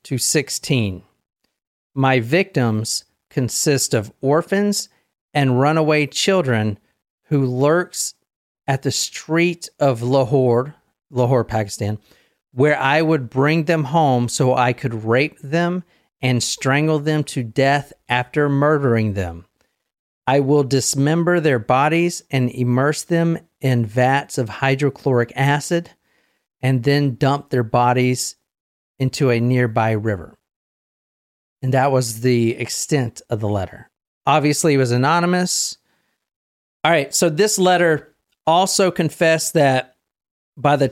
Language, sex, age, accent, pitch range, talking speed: English, male, 40-59, American, 125-155 Hz, 120 wpm